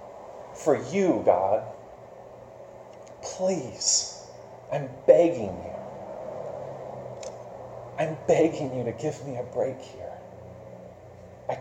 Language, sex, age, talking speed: English, male, 30-49, 90 wpm